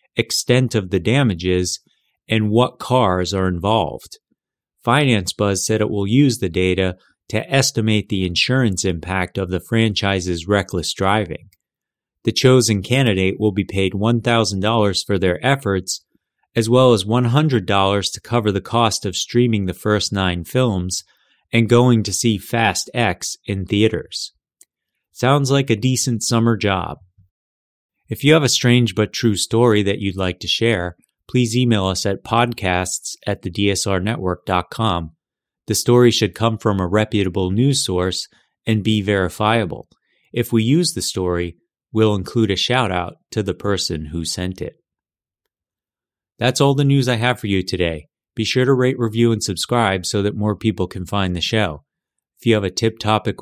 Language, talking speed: English, 160 wpm